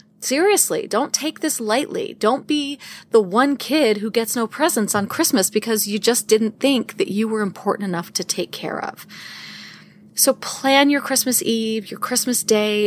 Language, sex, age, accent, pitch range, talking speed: English, female, 30-49, American, 210-280 Hz, 175 wpm